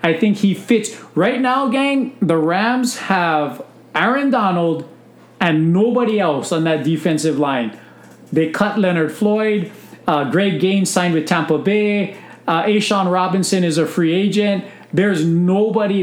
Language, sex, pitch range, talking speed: English, male, 160-200 Hz, 145 wpm